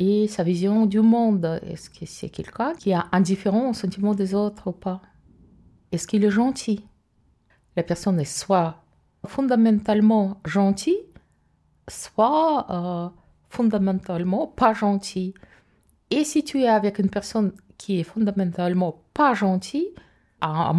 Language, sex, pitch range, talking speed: French, female, 170-215 Hz, 135 wpm